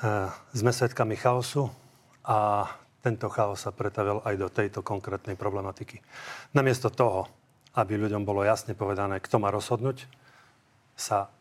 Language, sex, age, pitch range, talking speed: Slovak, male, 40-59, 105-130 Hz, 125 wpm